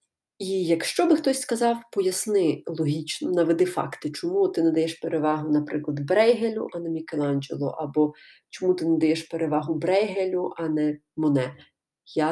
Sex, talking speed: female, 135 wpm